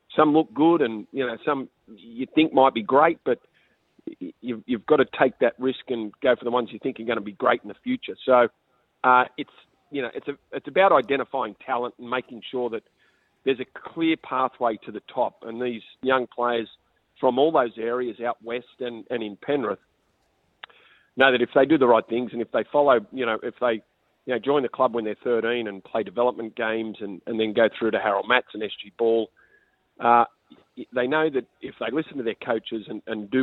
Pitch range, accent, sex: 115-135 Hz, Australian, male